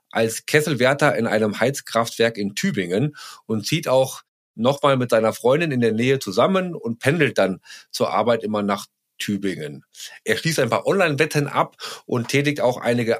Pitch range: 115-155 Hz